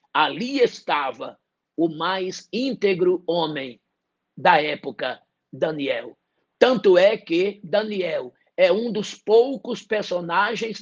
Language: English